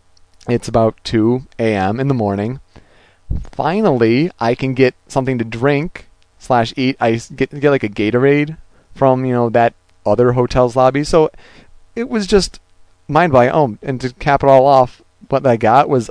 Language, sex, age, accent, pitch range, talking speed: English, male, 30-49, American, 105-145 Hz, 170 wpm